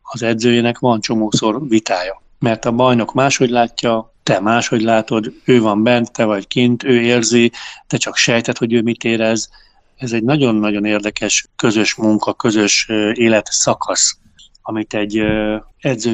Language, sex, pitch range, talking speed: Hungarian, male, 115-140 Hz, 150 wpm